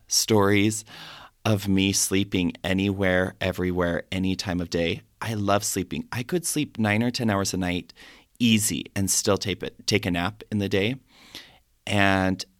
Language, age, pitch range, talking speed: English, 30-49, 100-135 Hz, 160 wpm